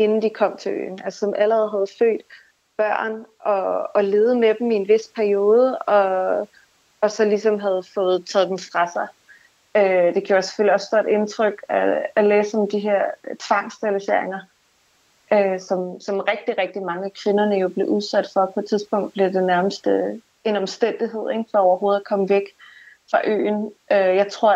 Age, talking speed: 30-49, 180 wpm